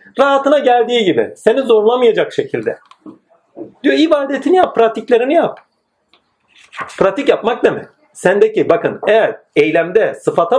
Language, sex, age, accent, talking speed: Turkish, male, 40-59, native, 115 wpm